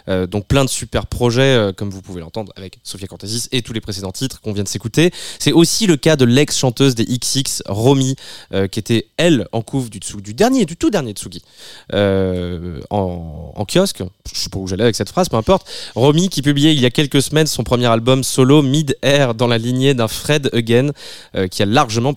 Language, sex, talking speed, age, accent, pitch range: French, male, 225 wpm, 20-39, French, 100-130 Hz